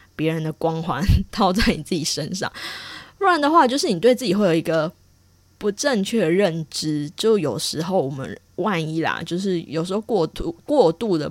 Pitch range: 155-190 Hz